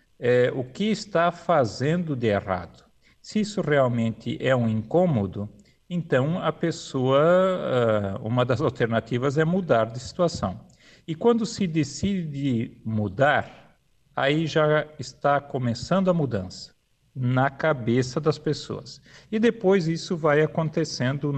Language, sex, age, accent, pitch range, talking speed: Portuguese, male, 50-69, Brazilian, 125-165 Hz, 120 wpm